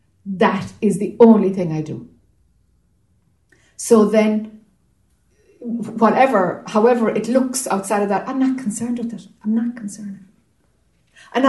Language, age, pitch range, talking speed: English, 60-79, 205-300 Hz, 130 wpm